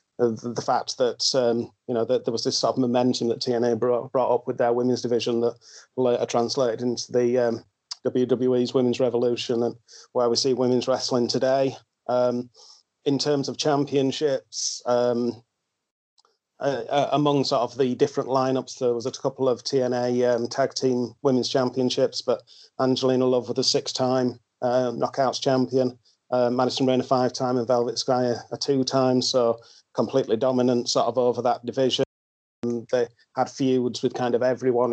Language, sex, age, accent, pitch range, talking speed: English, male, 30-49, British, 120-130 Hz, 165 wpm